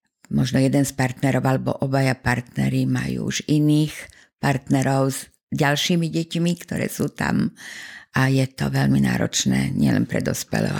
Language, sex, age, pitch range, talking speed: Slovak, female, 50-69, 125-155 Hz, 140 wpm